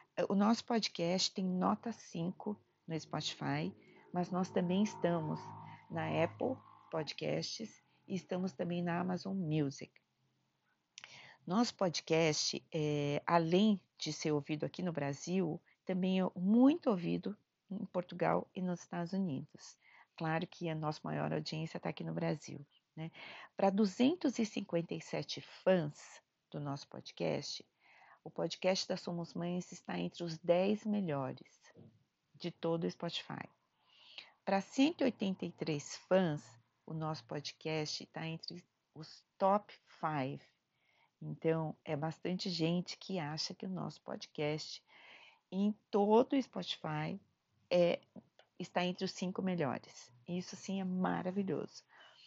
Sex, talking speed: female, 120 wpm